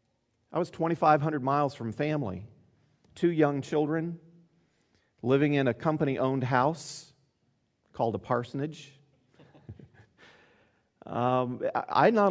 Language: English